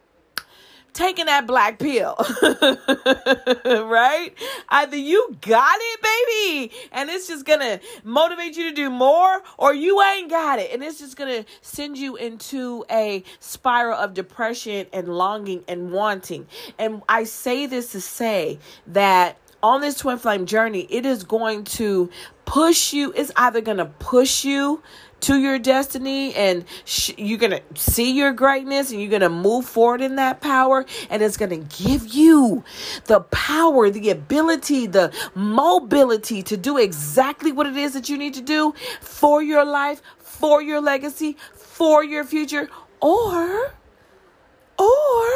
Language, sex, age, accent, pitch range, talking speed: English, female, 40-59, American, 220-300 Hz, 150 wpm